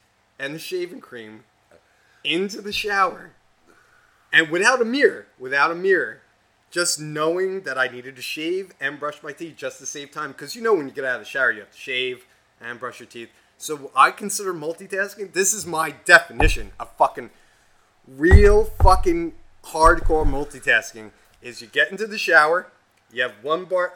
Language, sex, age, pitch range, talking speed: English, male, 30-49, 140-205 Hz, 180 wpm